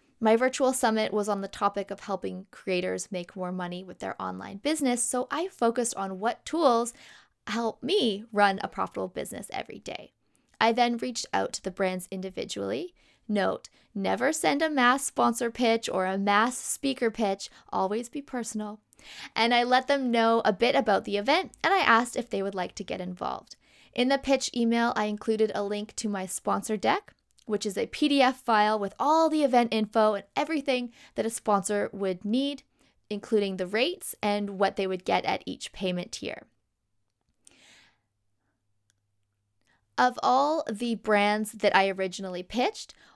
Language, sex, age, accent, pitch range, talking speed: English, female, 20-39, American, 195-255 Hz, 170 wpm